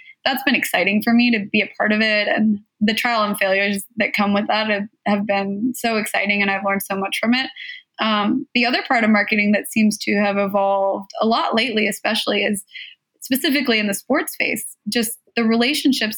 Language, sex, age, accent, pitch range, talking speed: English, female, 20-39, American, 205-235 Hz, 210 wpm